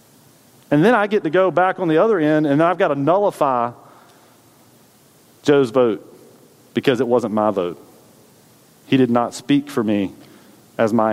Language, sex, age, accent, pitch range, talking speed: English, male, 40-59, American, 120-165 Hz, 165 wpm